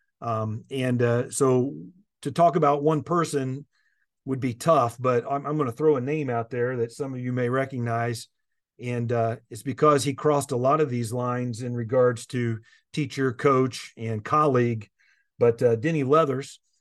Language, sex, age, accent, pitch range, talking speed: English, male, 40-59, American, 120-145 Hz, 180 wpm